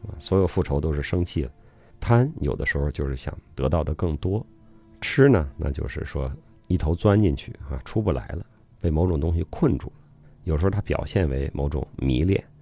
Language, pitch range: Chinese, 80-105 Hz